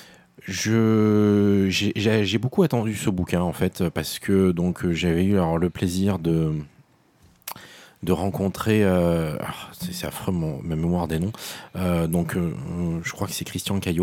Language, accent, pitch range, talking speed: French, French, 85-100 Hz, 170 wpm